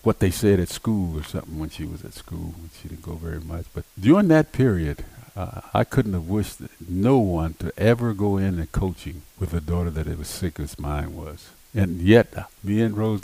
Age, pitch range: 50-69, 85-105 Hz